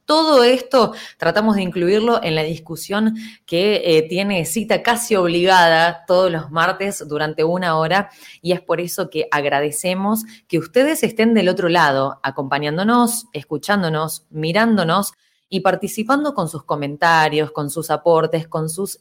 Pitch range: 160-215 Hz